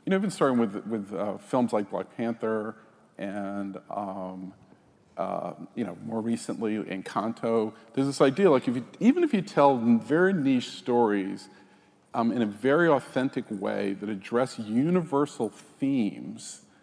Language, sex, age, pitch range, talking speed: English, male, 50-69, 100-130 Hz, 150 wpm